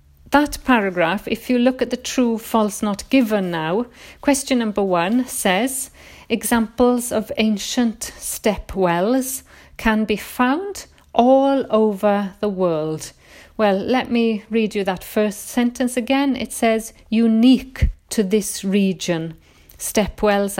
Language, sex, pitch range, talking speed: English, female, 185-245 Hz, 130 wpm